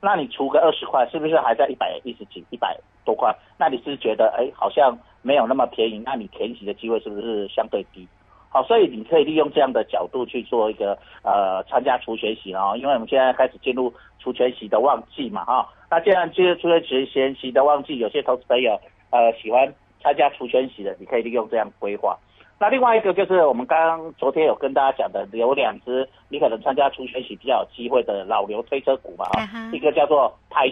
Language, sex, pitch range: Chinese, male, 115-165 Hz